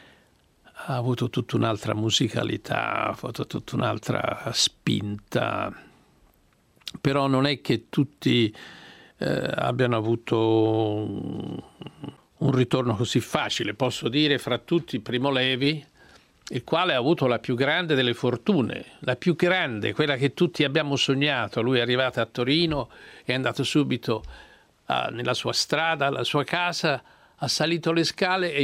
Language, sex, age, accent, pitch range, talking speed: Italian, male, 50-69, native, 115-160 Hz, 135 wpm